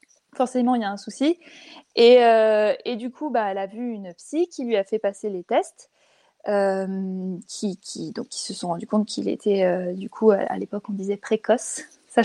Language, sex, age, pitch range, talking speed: French, female, 20-39, 215-275 Hz, 210 wpm